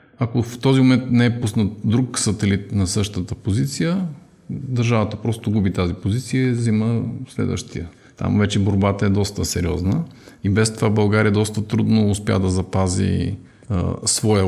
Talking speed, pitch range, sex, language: 155 wpm, 95-110 Hz, male, Bulgarian